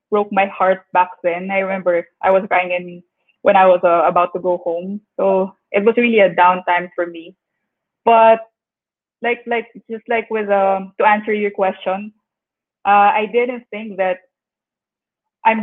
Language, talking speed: English, 170 wpm